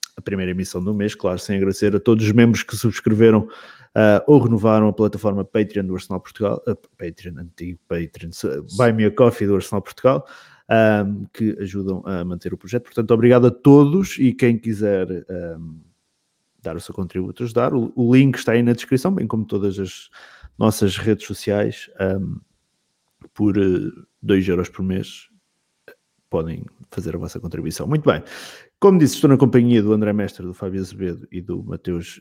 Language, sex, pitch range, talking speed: Portuguese, male, 95-125 Hz, 180 wpm